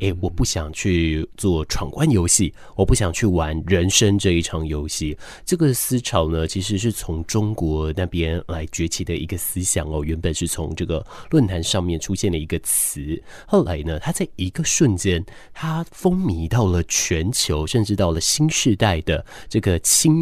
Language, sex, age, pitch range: Chinese, male, 20-39, 85-110 Hz